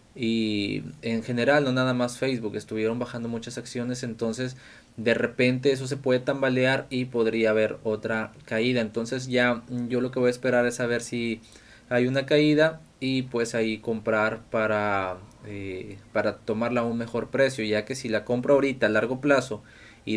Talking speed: 175 wpm